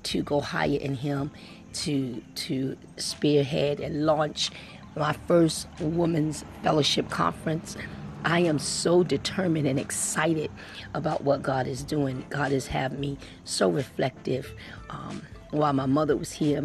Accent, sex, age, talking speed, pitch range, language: American, female, 40-59, 140 wpm, 135-180 Hz, English